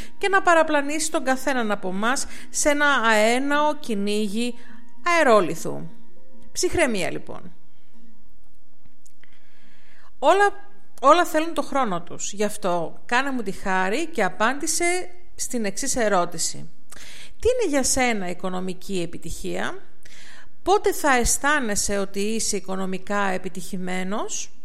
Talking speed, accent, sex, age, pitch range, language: 105 wpm, native, female, 40-59, 200-285 Hz, Greek